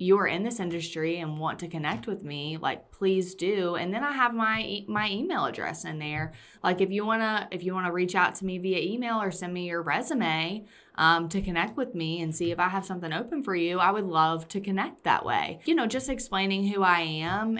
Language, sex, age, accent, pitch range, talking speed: English, female, 20-39, American, 160-195 Hz, 240 wpm